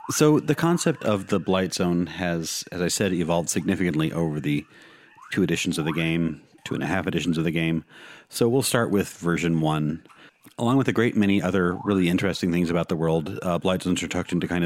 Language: English